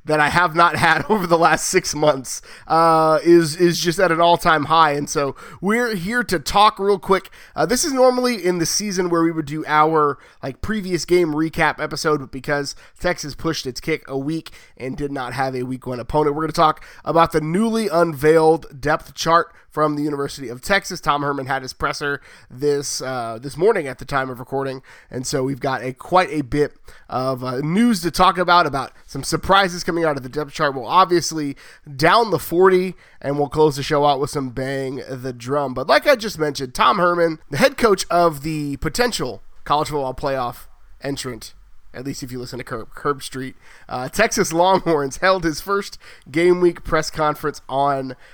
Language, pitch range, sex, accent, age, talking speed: English, 140-175 Hz, male, American, 30-49, 200 wpm